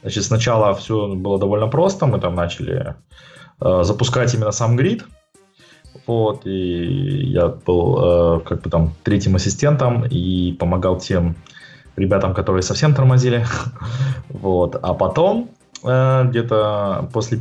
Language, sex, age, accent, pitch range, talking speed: Russian, male, 20-39, native, 100-125 Hz, 130 wpm